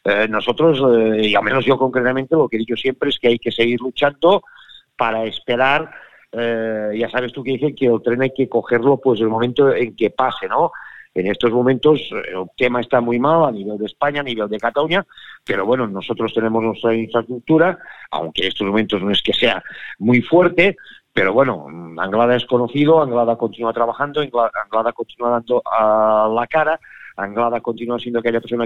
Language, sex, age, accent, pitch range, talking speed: Spanish, male, 50-69, Spanish, 115-130 Hz, 195 wpm